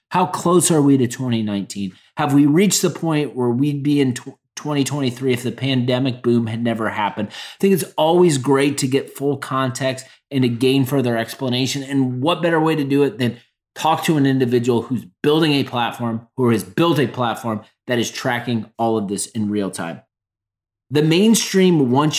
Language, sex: English, male